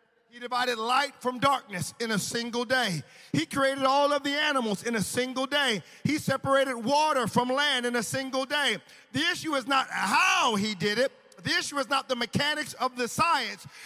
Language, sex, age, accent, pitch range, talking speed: English, male, 40-59, American, 265-385 Hz, 195 wpm